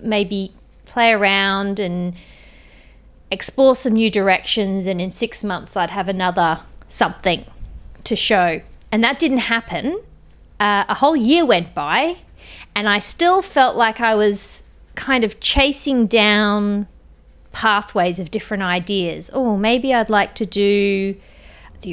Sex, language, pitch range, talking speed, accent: female, English, 185-230 Hz, 135 wpm, Australian